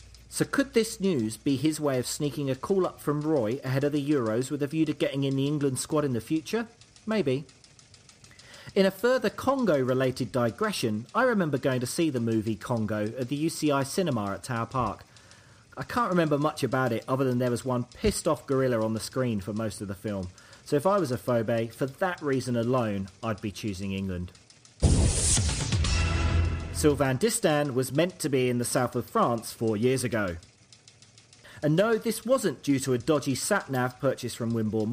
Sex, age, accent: male, 40-59, British